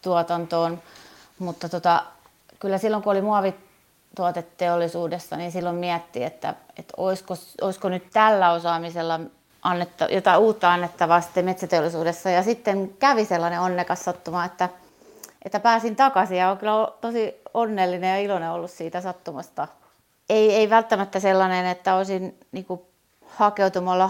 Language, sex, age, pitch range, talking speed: Finnish, female, 30-49, 180-205 Hz, 125 wpm